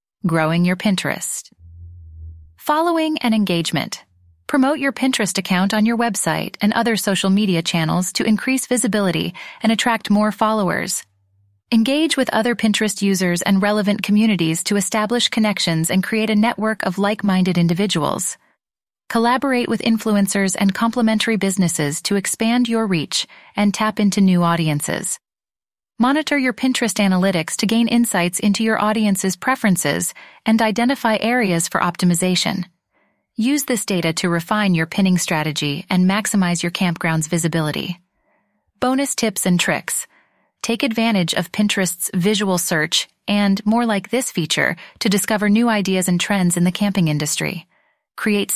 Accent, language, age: American, English, 30-49